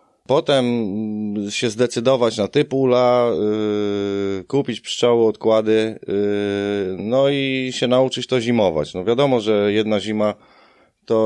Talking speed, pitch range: 125 wpm, 110-125 Hz